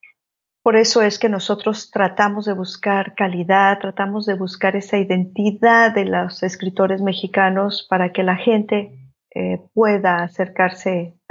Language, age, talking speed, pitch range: Spanish, 40-59, 135 wpm, 185-210 Hz